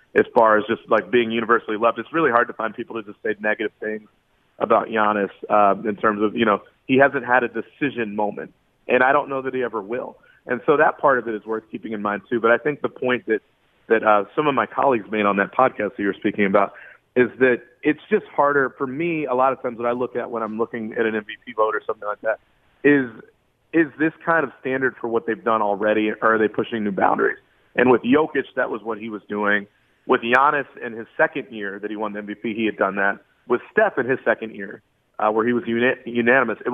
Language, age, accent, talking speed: English, 30-49, American, 250 wpm